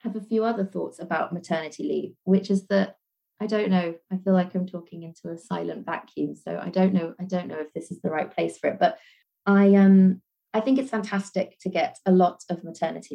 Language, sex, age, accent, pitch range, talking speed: English, female, 20-39, British, 170-200 Hz, 235 wpm